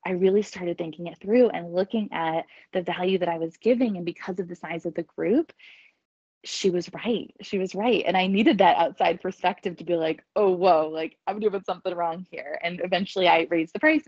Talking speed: 220 wpm